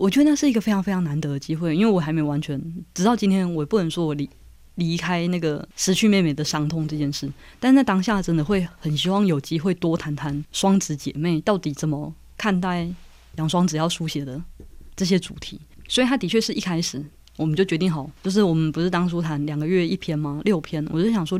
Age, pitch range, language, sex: 20-39, 155-195 Hz, Chinese, female